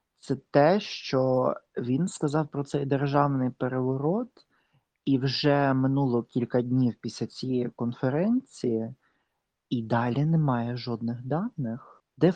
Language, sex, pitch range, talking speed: Ukrainian, male, 130-175 Hz, 110 wpm